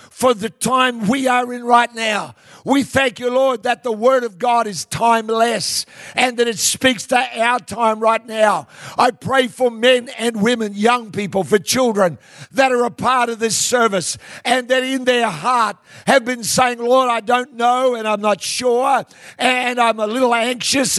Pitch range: 210-255 Hz